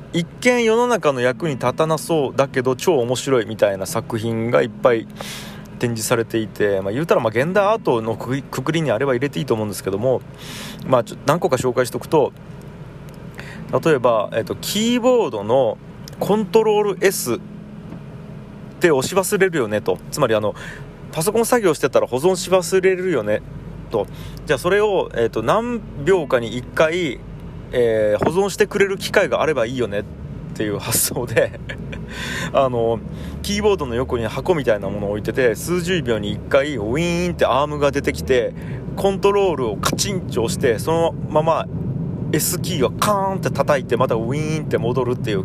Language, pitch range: Japanese, 125-190 Hz